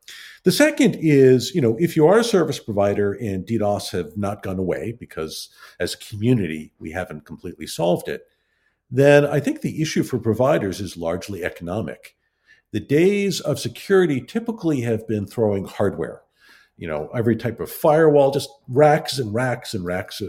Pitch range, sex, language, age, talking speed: 95-140 Hz, male, English, 50-69, 170 wpm